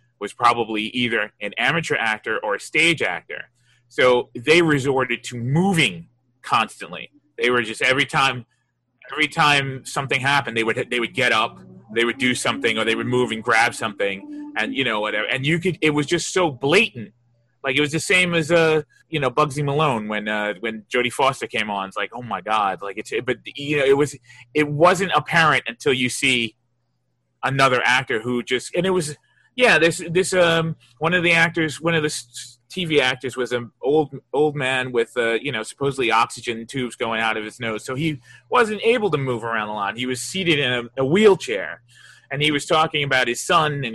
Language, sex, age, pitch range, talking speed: English, male, 30-49, 115-150 Hz, 210 wpm